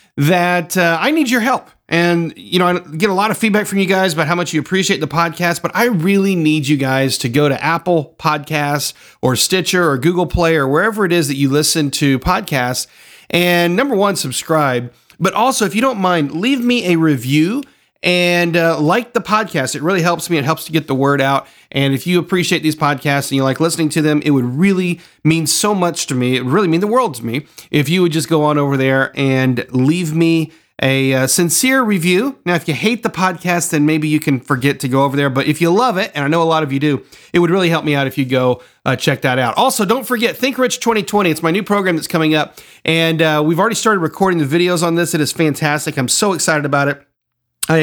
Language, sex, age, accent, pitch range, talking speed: English, male, 40-59, American, 140-180 Hz, 245 wpm